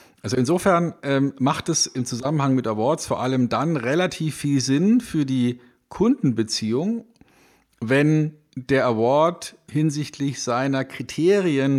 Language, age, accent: German, 50-69, German